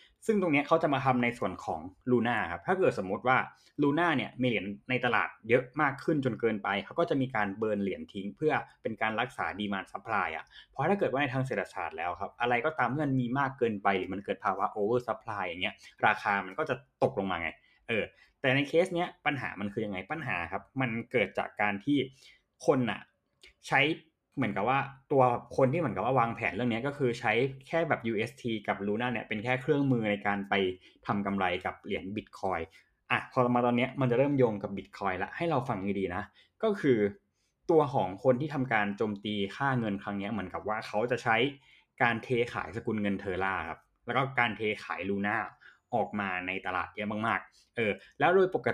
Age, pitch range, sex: 20-39, 100-135 Hz, male